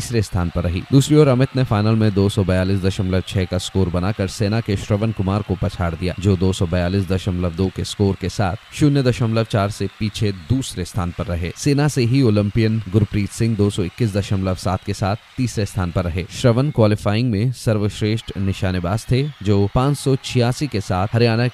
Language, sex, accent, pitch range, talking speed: Hindi, male, native, 95-120 Hz, 160 wpm